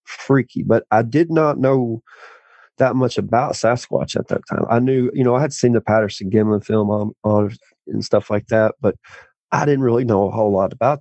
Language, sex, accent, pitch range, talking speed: English, male, American, 100-120 Hz, 215 wpm